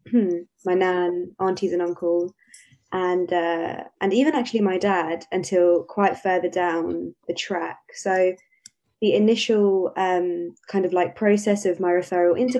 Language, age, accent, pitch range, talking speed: English, 20-39, British, 175-205 Hz, 145 wpm